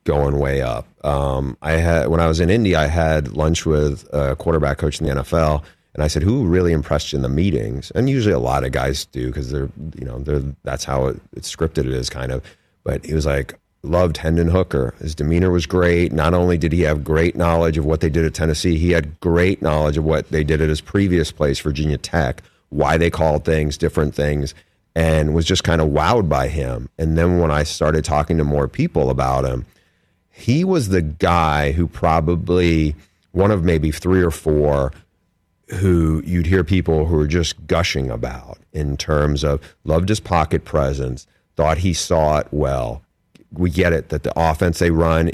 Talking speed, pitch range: 205 wpm, 75-90 Hz